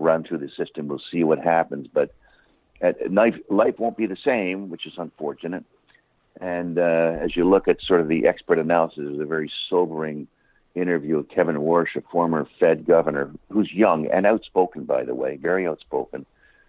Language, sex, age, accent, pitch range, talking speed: English, male, 60-79, American, 75-95 Hz, 185 wpm